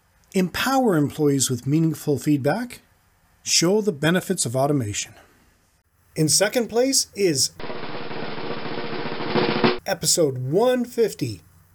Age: 40-59